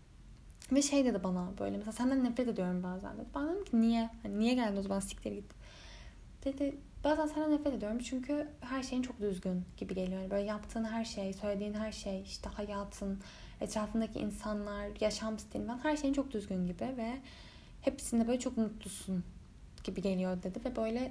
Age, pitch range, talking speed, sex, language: 10-29, 195-250 Hz, 175 wpm, female, Turkish